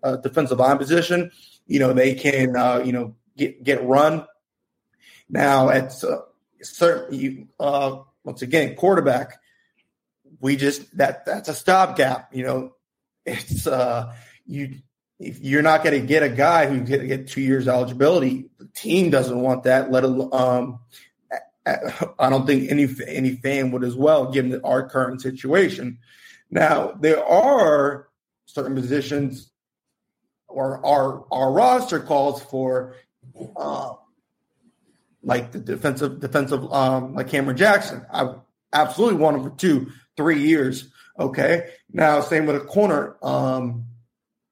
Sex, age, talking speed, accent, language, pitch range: male, 30-49, 140 wpm, American, English, 130-155 Hz